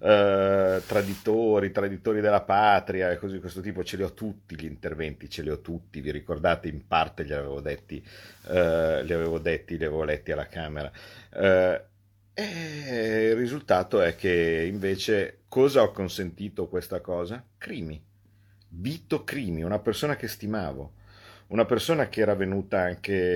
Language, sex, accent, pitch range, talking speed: Italian, male, native, 90-110 Hz, 155 wpm